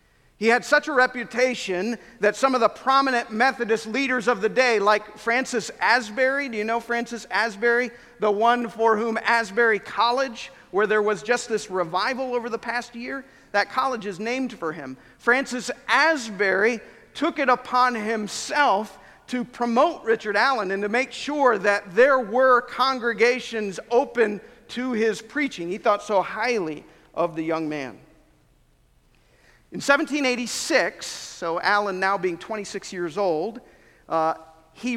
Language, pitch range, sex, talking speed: English, 200-250 Hz, male, 150 wpm